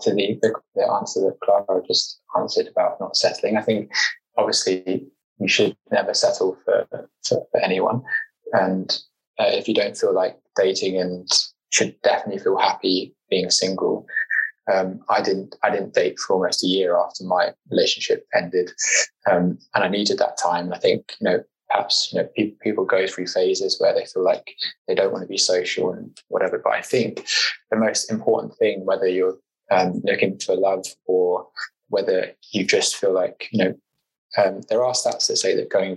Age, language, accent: 20-39, English, British